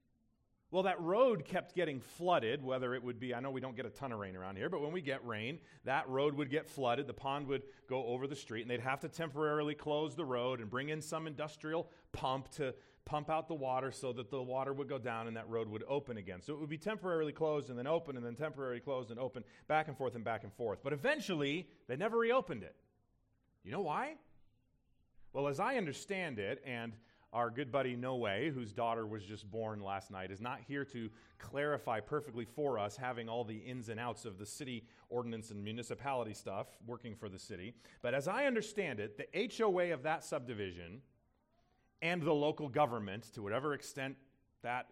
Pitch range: 115-150 Hz